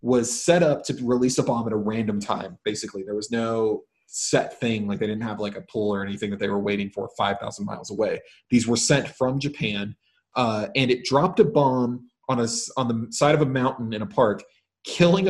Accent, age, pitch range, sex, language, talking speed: American, 20-39, 110-140 Hz, male, English, 225 wpm